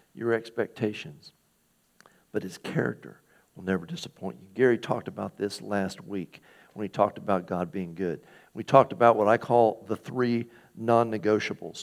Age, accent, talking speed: 50-69, American, 155 wpm